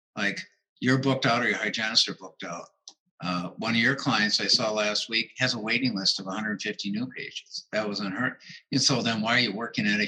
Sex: male